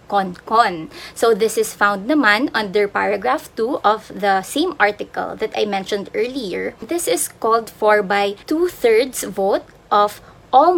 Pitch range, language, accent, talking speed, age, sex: 210-290 Hz, Filipino, native, 145 wpm, 20-39, female